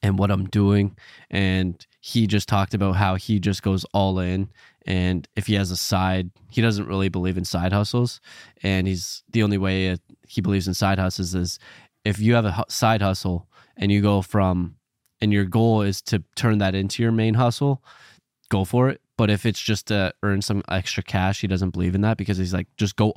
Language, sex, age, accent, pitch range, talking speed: English, male, 20-39, American, 90-105 Hz, 210 wpm